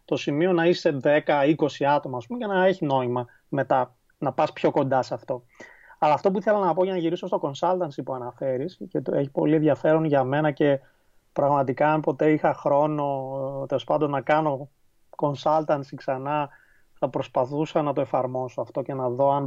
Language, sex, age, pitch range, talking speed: Greek, male, 30-49, 135-170 Hz, 190 wpm